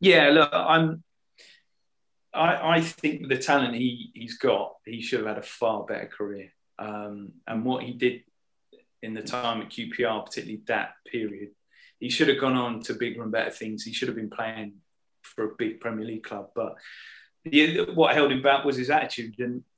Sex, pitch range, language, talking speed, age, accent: male, 115-140 Hz, English, 190 wpm, 30-49, British